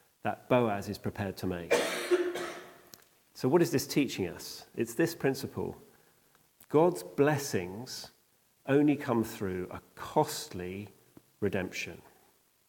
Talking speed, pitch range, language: 110 wpm, 100-135 Hz, English